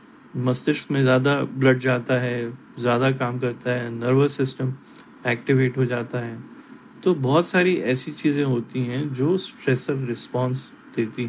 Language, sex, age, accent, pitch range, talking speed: Hindi, male, 30-49, native, 125-150 Hz, 145 wpm